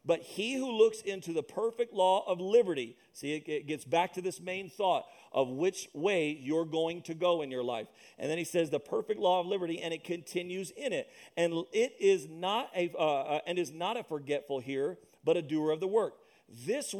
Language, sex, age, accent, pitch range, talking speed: English, male, 40-59, American, 155-200 Hz, 220 wpm